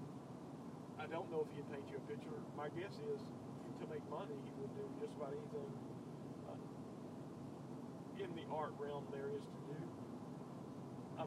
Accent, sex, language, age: American, male, English, 40-59